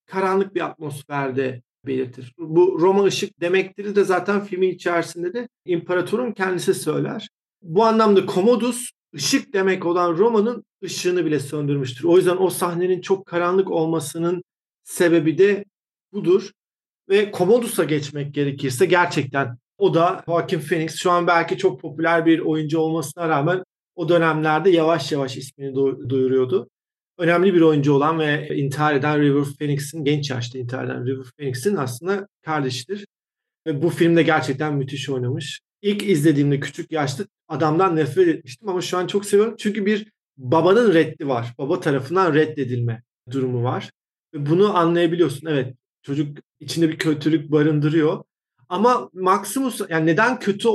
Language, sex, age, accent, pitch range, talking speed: Turkish, male, 40-59, native, 150-190 Hz, 140 wpm